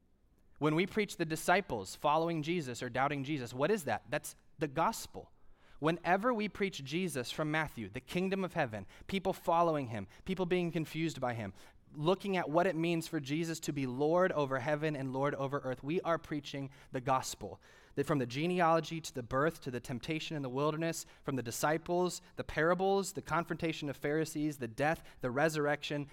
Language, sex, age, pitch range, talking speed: English, male, 20-39, 110-160 Hz, 185 wpm